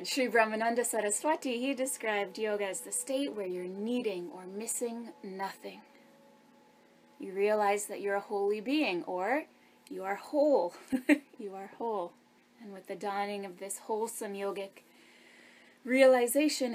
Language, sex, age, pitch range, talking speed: English, female, 20-39, 200-260 Hz, 135 wpm